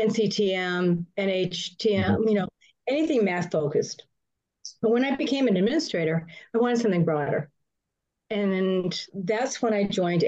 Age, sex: 50-69, female